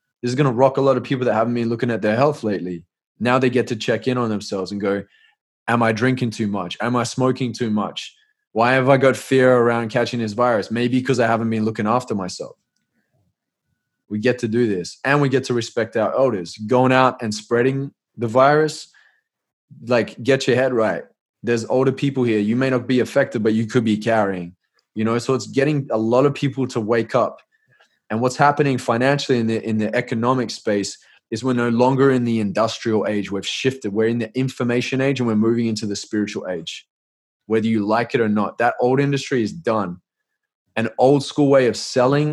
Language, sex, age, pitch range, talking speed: English, male, 20-39, 110-135 Hz, 215 wpm